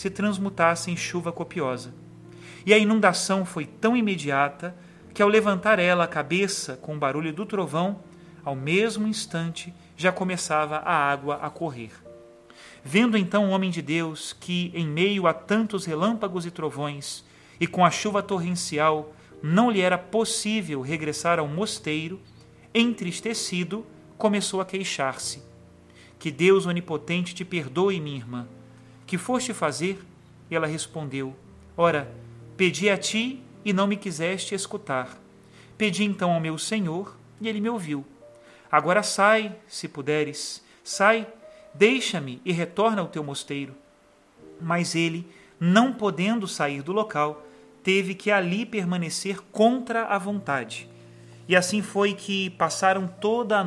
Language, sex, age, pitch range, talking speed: Portuguese, male, 40-59, 150-200 Hz, 140 wpm